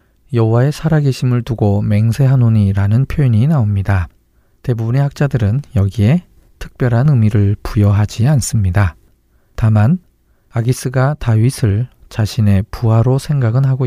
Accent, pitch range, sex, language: native, 105-130 Hz, male, Korean